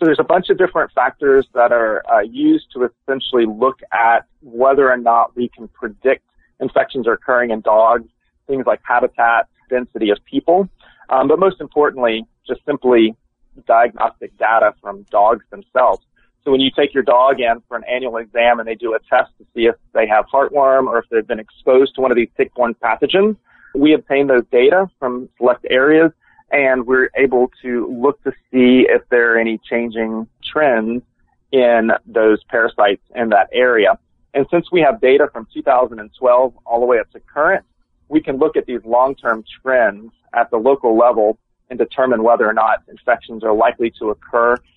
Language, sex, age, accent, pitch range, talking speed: English, male, 30-49, American, 115-145 Hz, 180 wpm